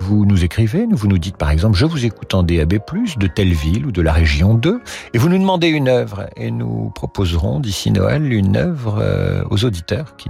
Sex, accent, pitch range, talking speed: male, French, 85-120 Hz, 235 wpm